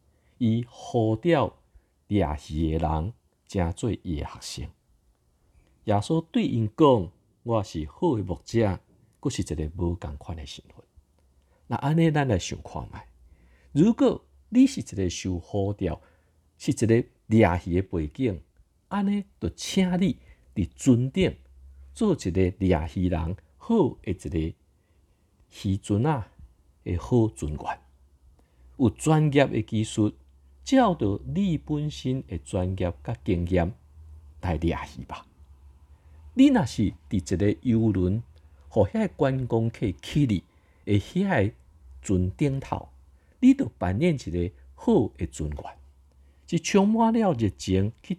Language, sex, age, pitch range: Chinese, male, 50-69, 80-120 Hz